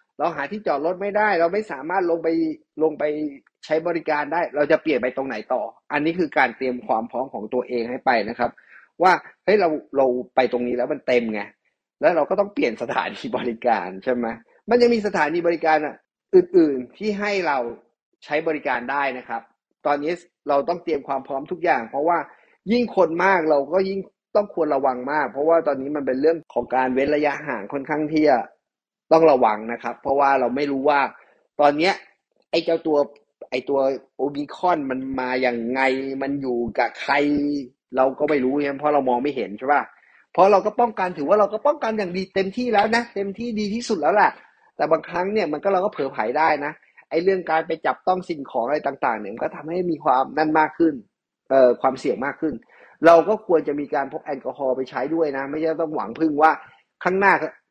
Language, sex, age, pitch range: English, male, 30-49, 135-180 Hz